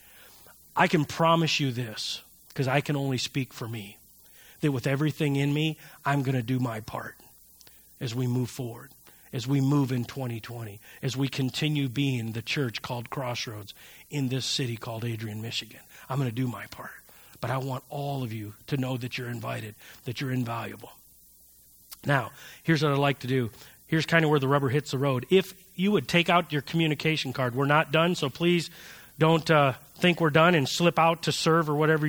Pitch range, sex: 130-165 Hz, male